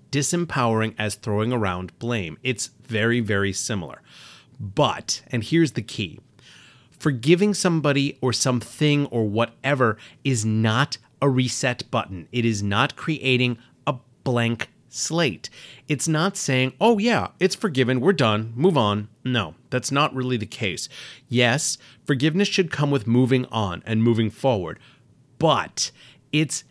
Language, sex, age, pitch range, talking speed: English, male, 30-49, 115-145 Hz, 135 wpm